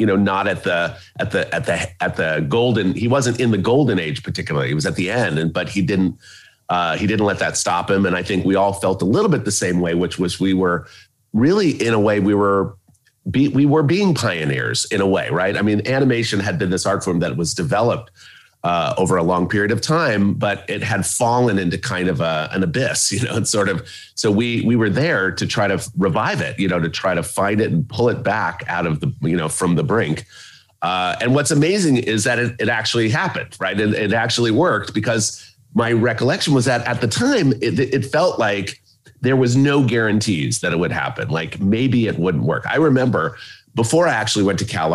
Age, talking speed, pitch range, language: 30-49, 235 wpm, 90-120 Hz, English